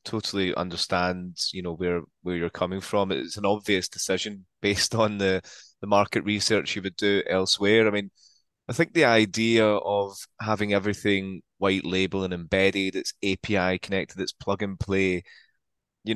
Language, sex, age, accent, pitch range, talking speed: English, male, 20-39, British, 95-105 Hz, 165 wpm